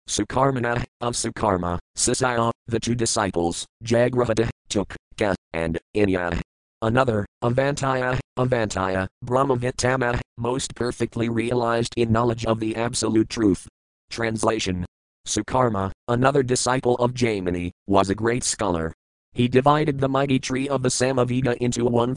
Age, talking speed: 30-49, 120 wpm